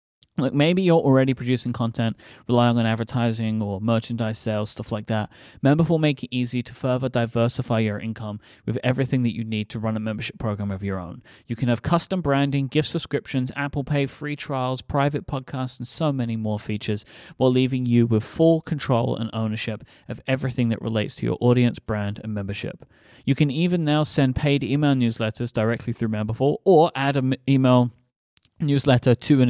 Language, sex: English, male